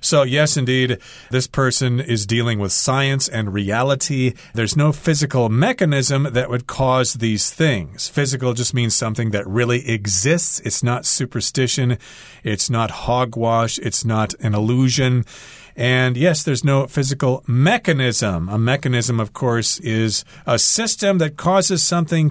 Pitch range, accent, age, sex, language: 110-145 Hz, American, 40-59, male, Chinese